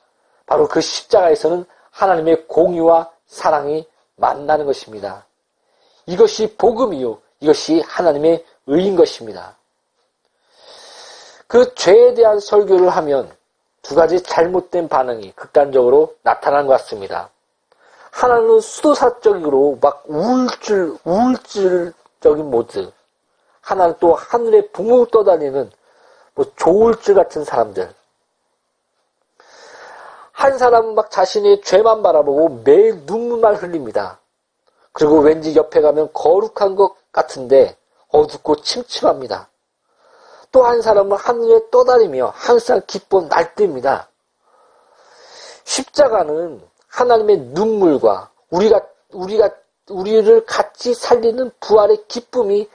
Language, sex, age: Korean, male, 40-59